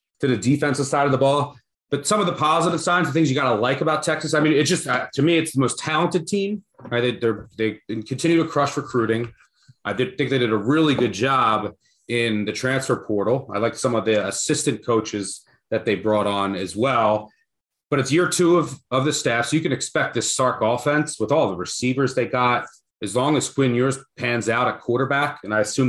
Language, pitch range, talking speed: English, 110-140 Hz, 230 wpm